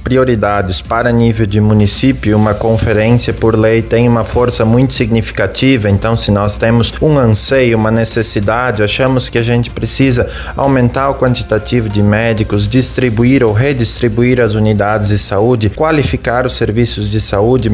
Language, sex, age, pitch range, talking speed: Portuguese, male, 20-39, 110-125 Hz, 150 wpm